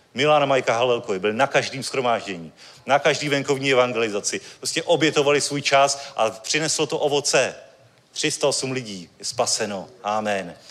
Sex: male